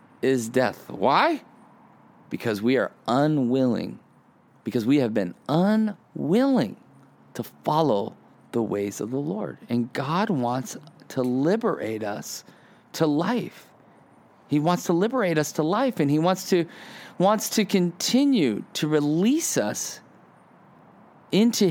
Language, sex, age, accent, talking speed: English, male, 40-59, American, 125 wpm